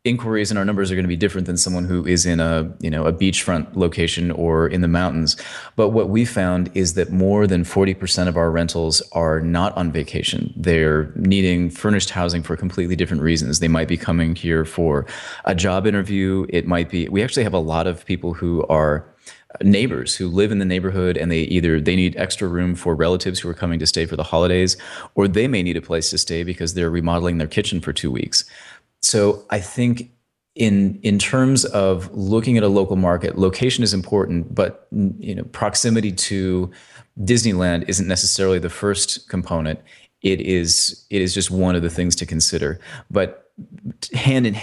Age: 30-49